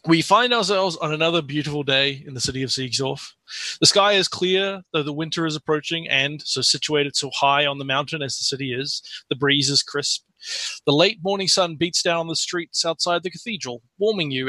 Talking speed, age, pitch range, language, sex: 210 wpm, 30-49, 135-170 Hz, English, male